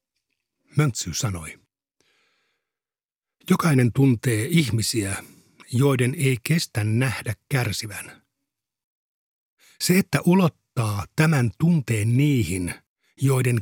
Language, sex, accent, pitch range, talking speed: Finnish, male, native, 115-150 Hz, 75 wpm